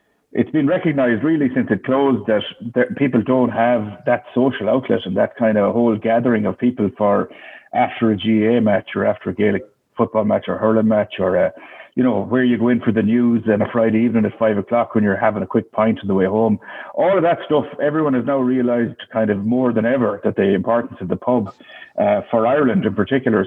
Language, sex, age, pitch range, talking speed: English, male, 60-79, 110-135 Hz, 230 wpm